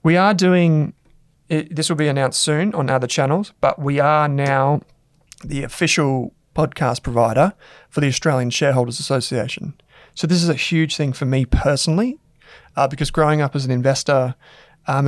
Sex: male